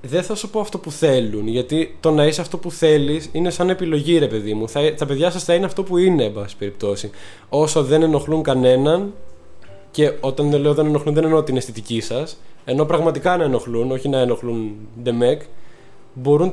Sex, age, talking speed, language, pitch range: male, 20-39, 205 wpm, English, 130-170 Hz